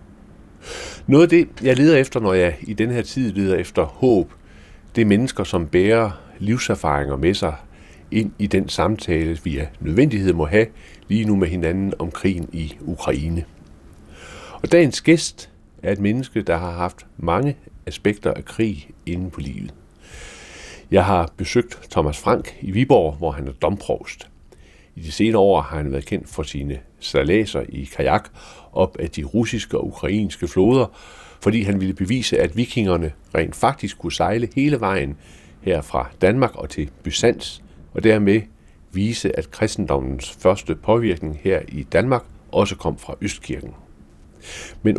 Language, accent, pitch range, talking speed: Danish, native, 75-105 Hz, 160 wpm